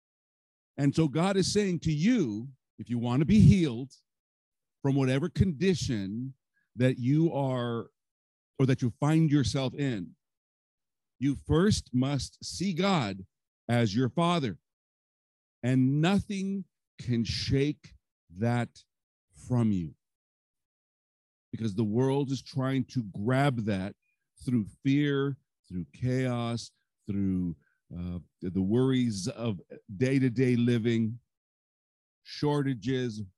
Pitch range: 110-140 Hz